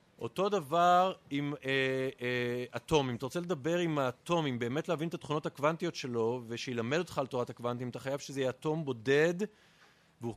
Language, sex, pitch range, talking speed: Hebrew, male, 130-175 Hz, 175 wpm